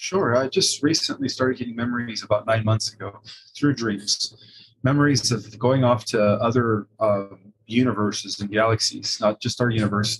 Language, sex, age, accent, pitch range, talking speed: English, male, 30-49, American, 105-130 Hz, 160 wpm